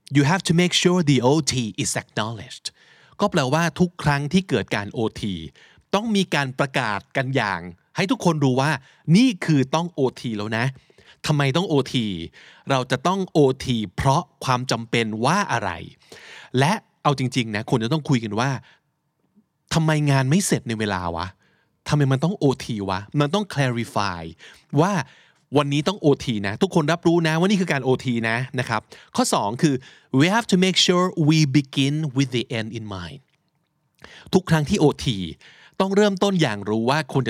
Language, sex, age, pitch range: Thai, male, 20-39, 120-160 Hz